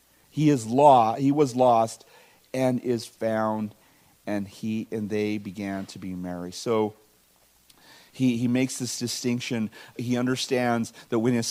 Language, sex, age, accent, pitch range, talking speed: English, male, 40-59, American, 110-130 Hz, 145 wpm